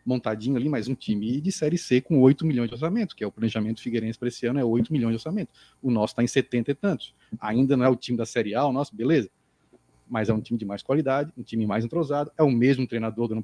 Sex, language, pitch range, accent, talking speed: male, Portuguese, 115-165 Hz, Brazilian, 270 wpm